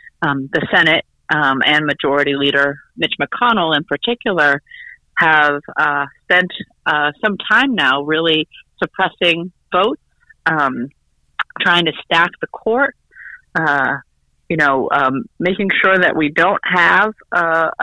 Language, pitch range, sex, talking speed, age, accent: English, 155-195 Hz, female, 130 wpm, 40-59, American